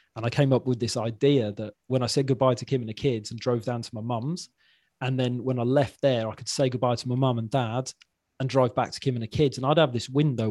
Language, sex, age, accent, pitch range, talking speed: English, male, 20-39, British, 115-135 Hz, 290 wpm